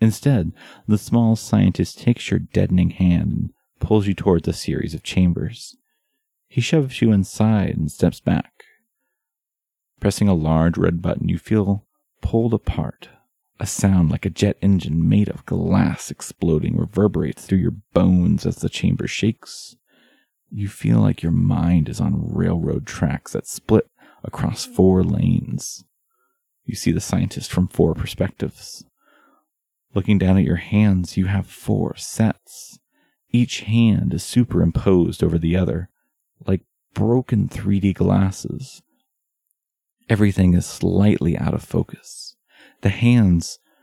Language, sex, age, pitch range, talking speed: English, male, 30-49, 95-120 Hz, 135 wpm